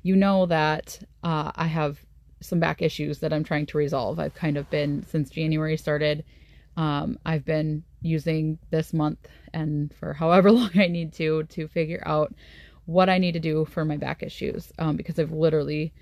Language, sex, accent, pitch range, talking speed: English, female, American, 145-170 Hz, 185 wpm